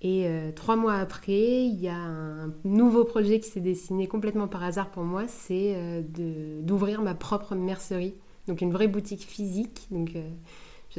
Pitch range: 170-205 Hz